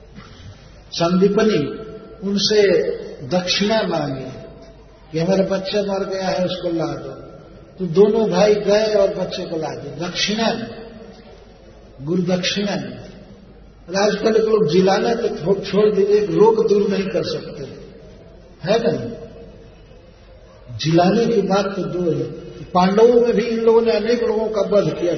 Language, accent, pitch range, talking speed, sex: Hindi, native, 180-215 Hz, 130 wpm, male